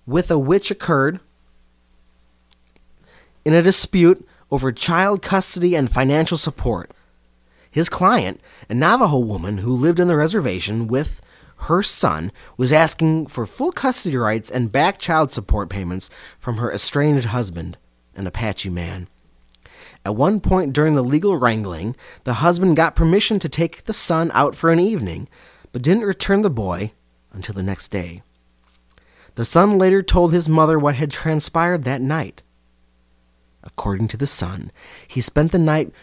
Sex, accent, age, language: male, American, 30-49, English